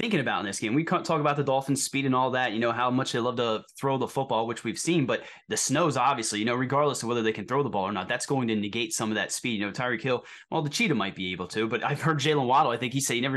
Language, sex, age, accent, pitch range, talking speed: English, male, 20-39, American, 110-135 Hz, 330 wpm